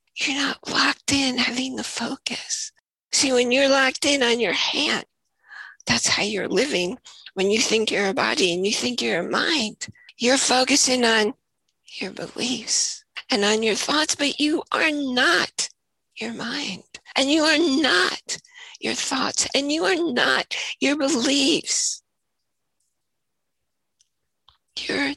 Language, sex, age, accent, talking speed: English, female, 50-69, American, 140 wpm